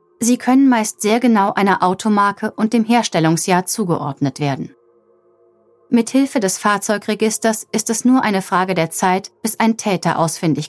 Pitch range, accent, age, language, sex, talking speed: 180-230 Hz, German, 30-49, German, female, 150 wpm